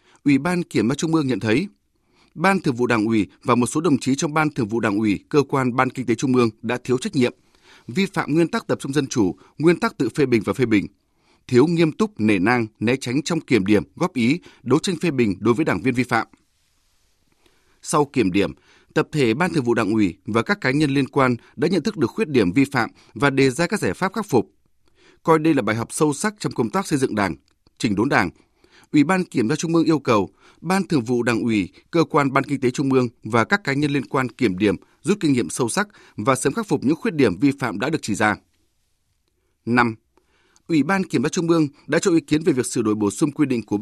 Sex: male